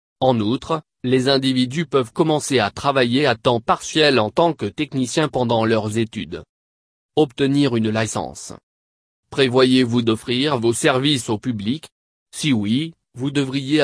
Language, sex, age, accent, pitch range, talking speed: French, male, 30-49, French, 110-140 Hz, 135 wpm